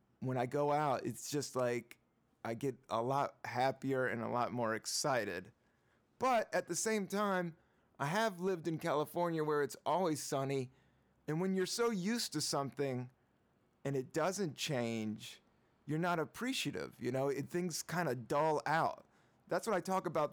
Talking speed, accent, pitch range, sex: 170 wpm, American, 135-175 Hz, male